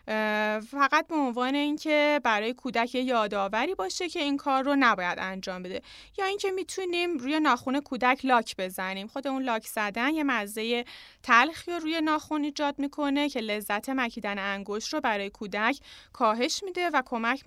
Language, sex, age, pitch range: Persian, female, 30-49, 215-295 Hz